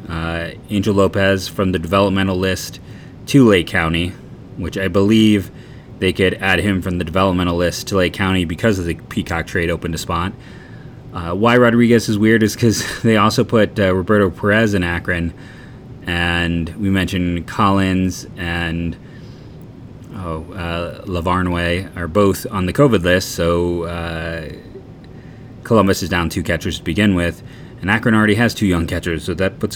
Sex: male